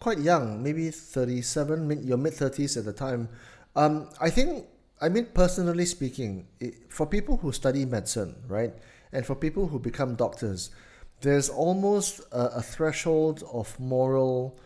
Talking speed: 150 wpm